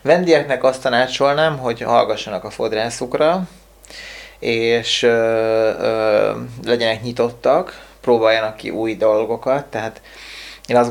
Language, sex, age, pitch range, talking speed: Hungarian, male, 30-49, 115-130 Hz, 105 wpm